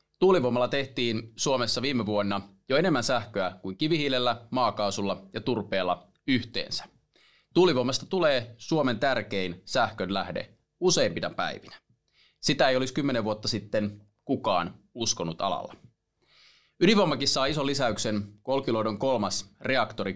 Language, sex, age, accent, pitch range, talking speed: Finnish, male, 30-49, native, 100-140 Hz, 110 wpm